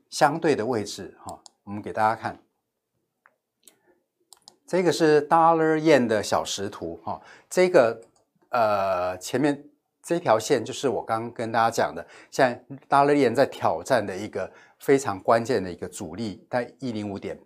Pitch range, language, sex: 105-135 Hz, Chinese, male